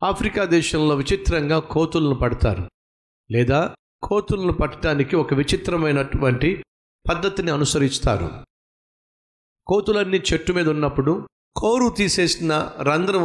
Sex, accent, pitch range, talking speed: male, native, 130-180 Hz, 85 wpm